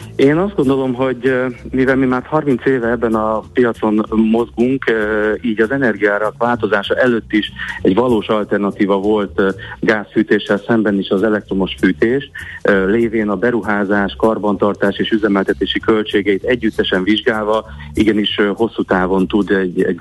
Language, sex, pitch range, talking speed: Hungarian, male, 95-115 Hz, 130 wpm